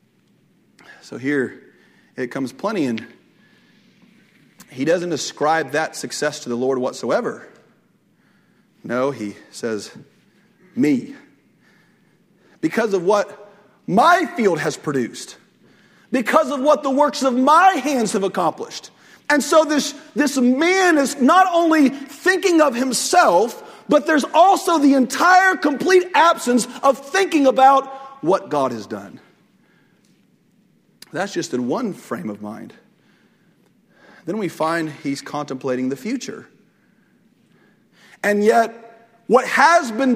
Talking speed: 120 wpm